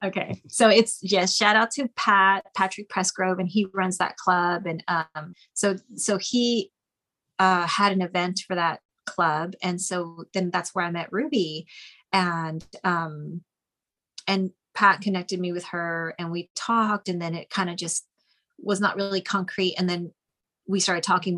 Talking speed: 175 wpm